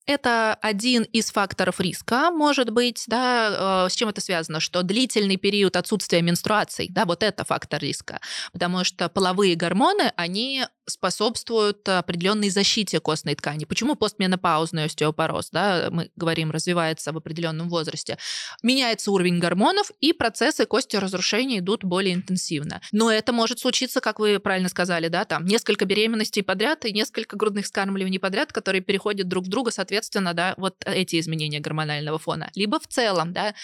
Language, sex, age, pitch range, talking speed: Russian, female, 20-39, 180-225 Hz, 155 wpm